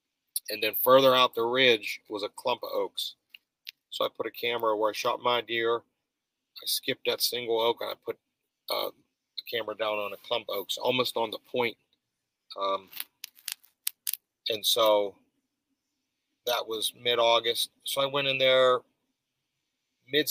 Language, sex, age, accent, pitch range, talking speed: English, male, 40-59, American, 110-135 Hz, 165 wpm